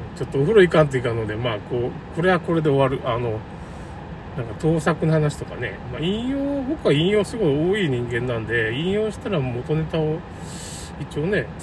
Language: Japanese